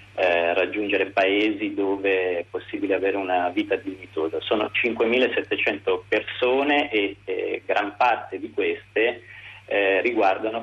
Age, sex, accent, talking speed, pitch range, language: 40-59, male, native, 120 wpm, 95-130 Hz, Italian